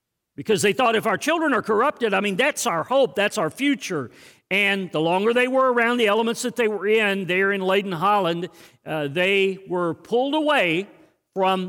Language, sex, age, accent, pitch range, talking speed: English, male, 50-69, American, 185-235 Hz, 195 wpm